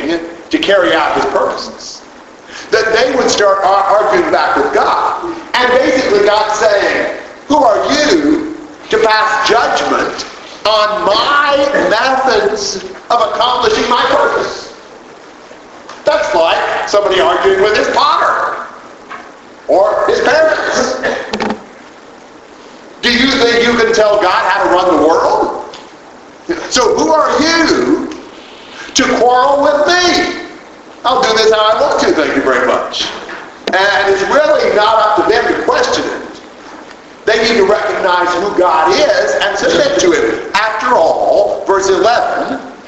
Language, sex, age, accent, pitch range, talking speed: English, male, 50-69, American, 215-320 Hz, 135 wpm